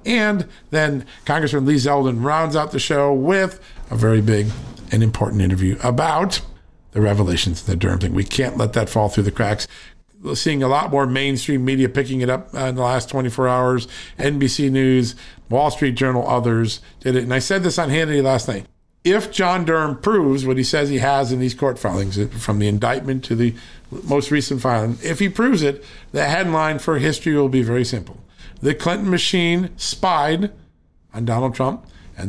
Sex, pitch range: male, 115-150 Hz